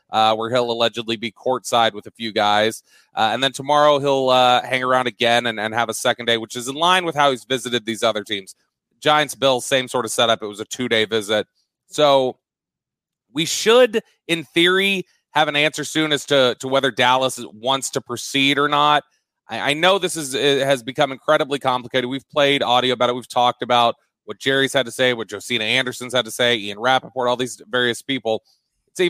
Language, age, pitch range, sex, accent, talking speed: English, 30-49, 120-150 Hz, male, American, 210 wpm